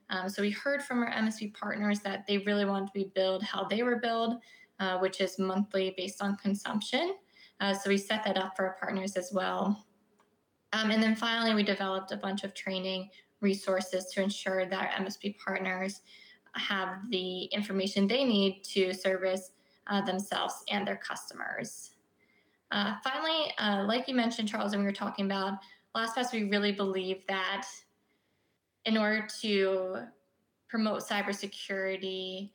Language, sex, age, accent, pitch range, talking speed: English, female, 20-39, American, 190-210 Hz, 165 wpm